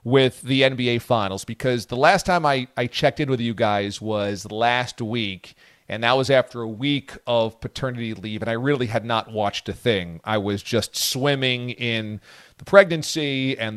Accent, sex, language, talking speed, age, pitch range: American, male, English, 190 wpm, 40-59, 110-135 Hz